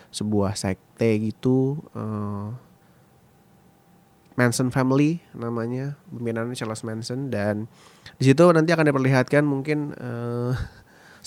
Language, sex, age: Indonesian, male, 20-39